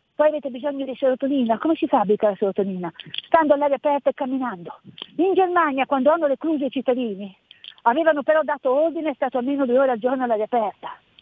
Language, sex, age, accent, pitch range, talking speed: Italian, female, 50-69, native, 255-315 Hz, 185 wpm